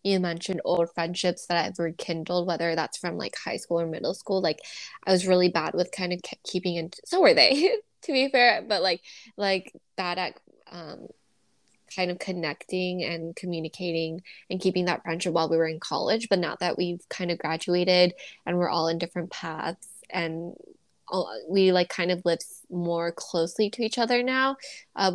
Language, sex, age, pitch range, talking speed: English, female, 10-29, 175-210 Hz, 185 wpm